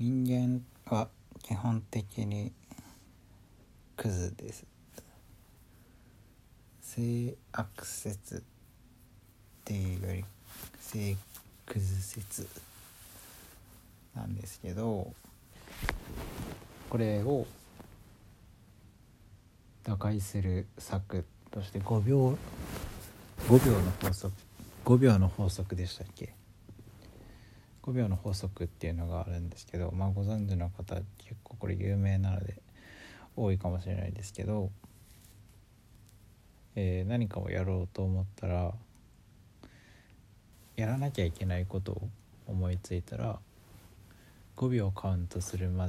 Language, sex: Japanese, male